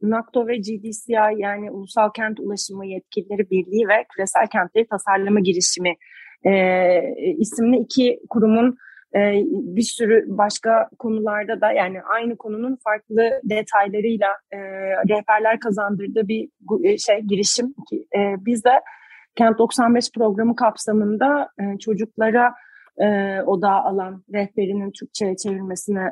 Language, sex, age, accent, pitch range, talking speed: Turkish, female, 30-49, native, 205-250 Hz, 115 wpm